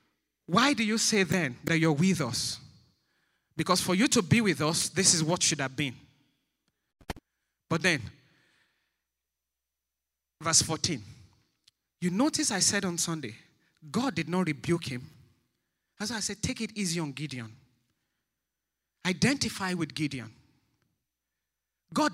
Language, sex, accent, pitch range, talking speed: English, male, Nigerian, 125-200 Hz, 135 wpm